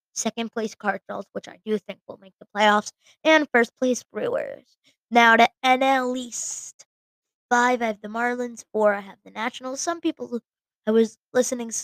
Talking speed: 170 wpm